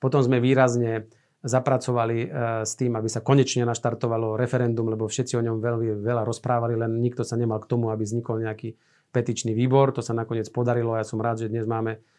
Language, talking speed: Slovak, 200 wpm